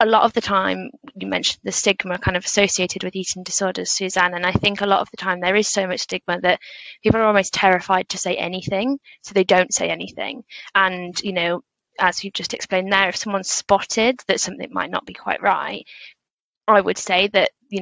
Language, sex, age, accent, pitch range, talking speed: English, female, 20-39, British, 185-215 Hz, 220 wpm